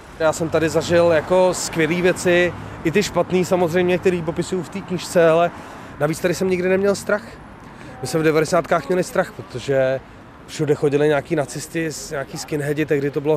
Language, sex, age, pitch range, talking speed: Czech, male, 30-49, 140-170 Hz, 175 wpm